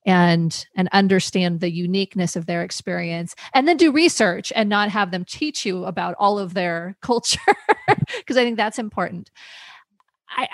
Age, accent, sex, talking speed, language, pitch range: 30-49, American, female, 165 wpm, English, 170-205 Hz